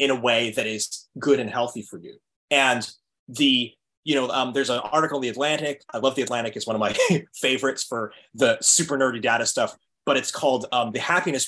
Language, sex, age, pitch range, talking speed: English, male, 20-39, 115-160 Hz, 220 wpm